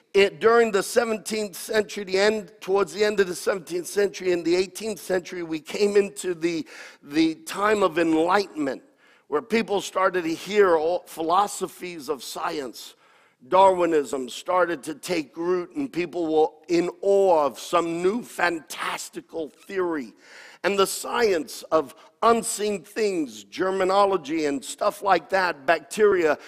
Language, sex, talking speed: English, male, 140 wpm